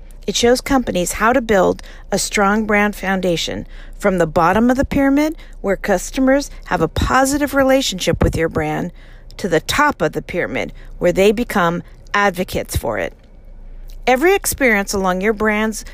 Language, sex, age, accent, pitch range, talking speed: English, female, 50-69, American, 180-240 Hz, 160 wpm